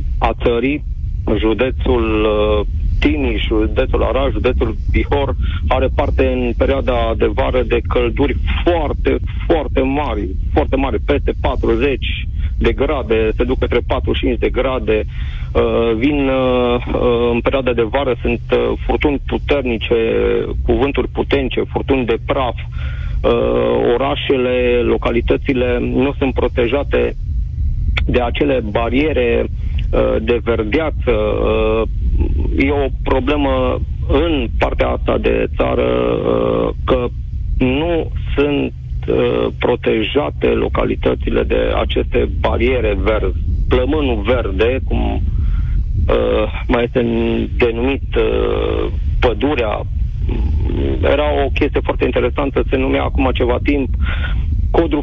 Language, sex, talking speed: Romanian, male, 105 wpm